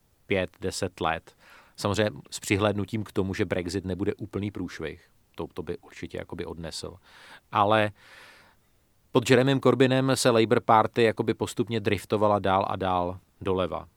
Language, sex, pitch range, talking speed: Czech, male, 90-105 Hz, 135 wpm